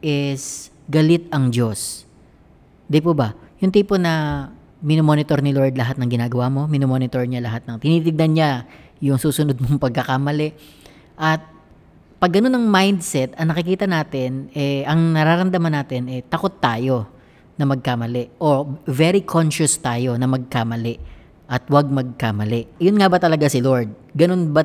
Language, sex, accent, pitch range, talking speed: Filipino, female, native, 130-165 Hz, 150 wpm